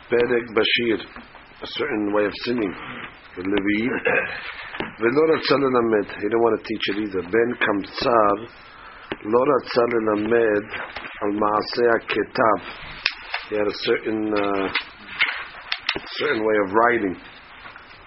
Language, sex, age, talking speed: English, male, 50-69, 125 wpm